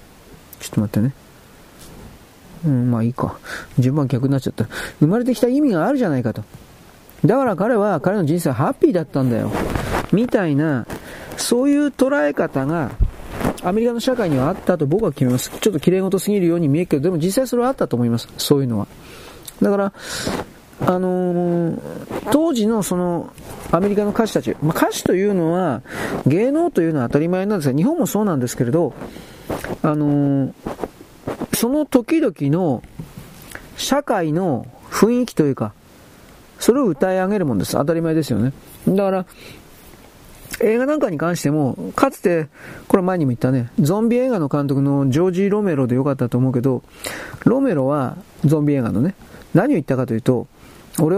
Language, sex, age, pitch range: Japanese, male, 40-59, 130-205 Hz